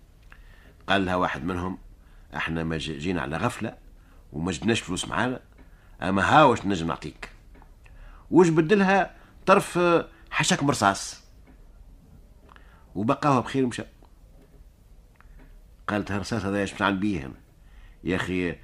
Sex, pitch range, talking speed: male, 85-140 Hz, 95 wpm